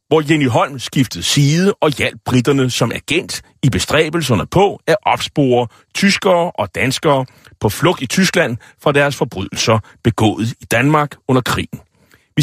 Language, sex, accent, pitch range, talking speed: Danish, male, native, 115-155 Hz, 150 wpm